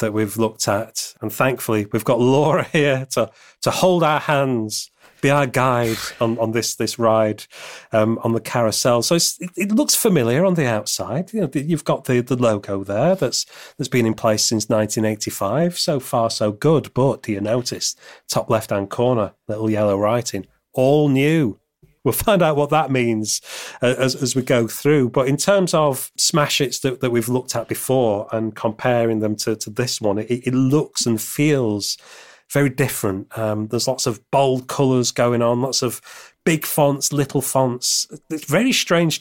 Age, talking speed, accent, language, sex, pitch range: 40-59, 185 wpm, British, English, male, 110-145 Hz